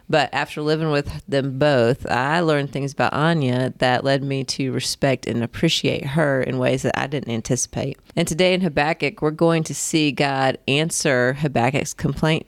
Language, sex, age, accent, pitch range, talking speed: English, female, 30-49, American, 130-160 Hz, 180 wpm